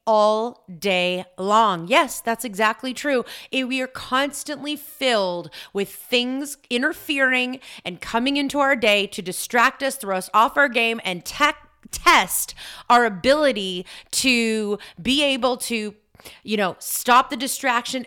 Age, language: 30-49, English